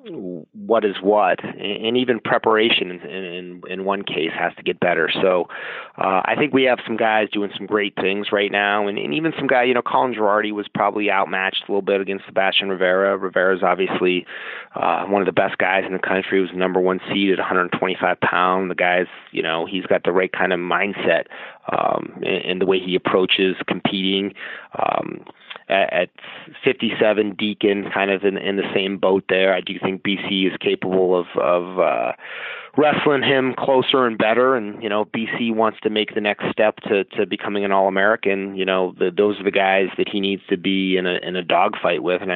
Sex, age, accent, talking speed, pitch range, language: male, 30-49, American, 210 wpm, 95-110 Hz, English